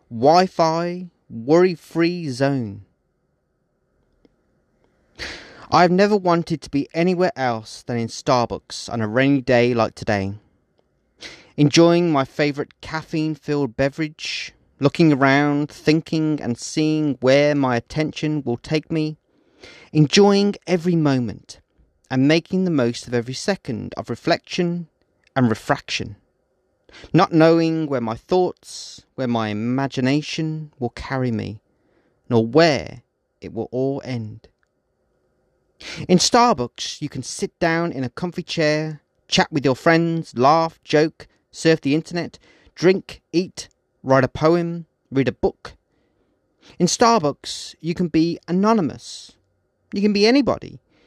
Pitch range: 130-170 Hz